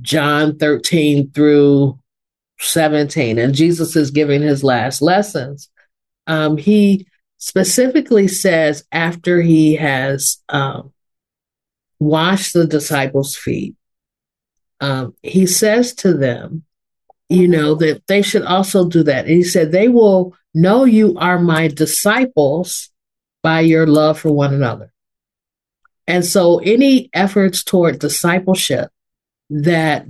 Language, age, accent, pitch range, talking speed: English, 50-69, American, 150-185 Hz, 120 wpm